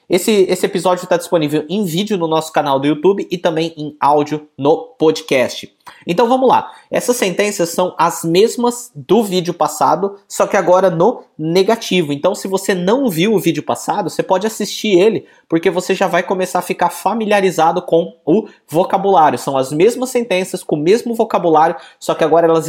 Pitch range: 160-210 Hz